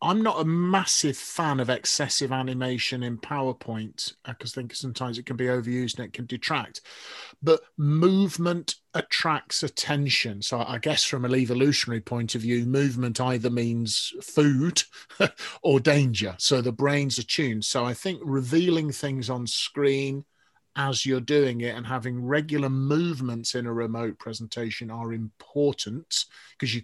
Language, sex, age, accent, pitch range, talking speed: English, male, 40-59, British, 120-145 Hz, 155 wpm